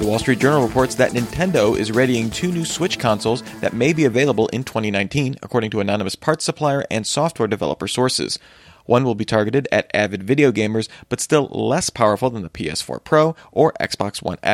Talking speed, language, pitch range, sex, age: 195 wpm, English, 110-140 Hz, male, 30-49